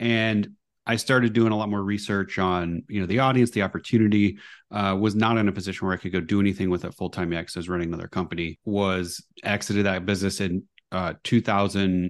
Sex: male